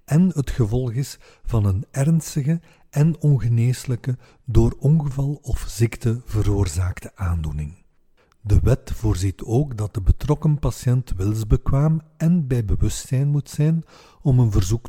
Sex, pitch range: male, 100-130 Hz